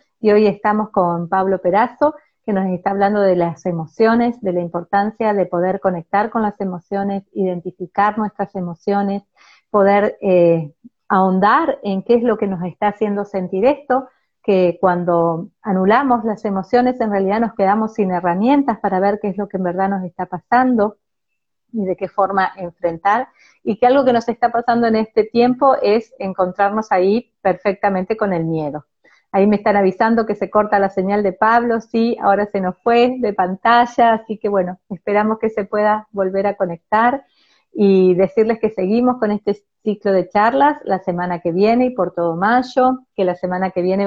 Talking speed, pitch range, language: 180 wpm, 185-225 Hz, Spanish